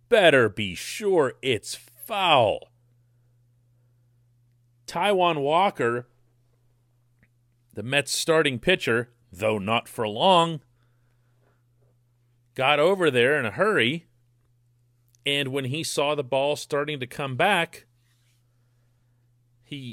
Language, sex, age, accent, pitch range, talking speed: English, male, 40-59, American, 120-145 Hz, 95 wpm